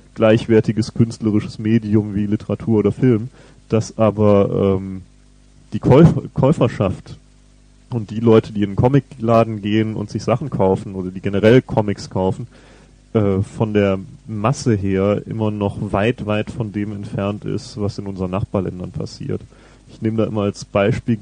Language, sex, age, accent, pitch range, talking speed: German, male, 30-49, German, 105-120 Hz, 155 wpm